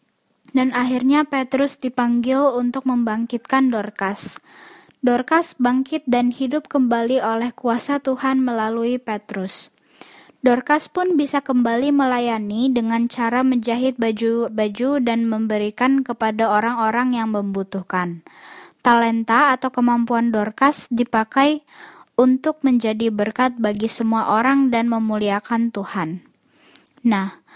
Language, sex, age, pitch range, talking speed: Indonesian, female, 10-29, 225-265 Hz, 100 wpm